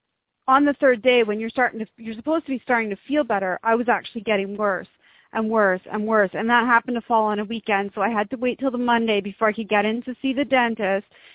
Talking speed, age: 265 wpm, 30-49